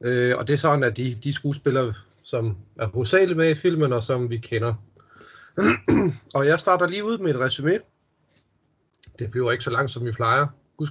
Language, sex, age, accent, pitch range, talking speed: Danish, male, 30-49, native, 120-150 Hz, 200 wpm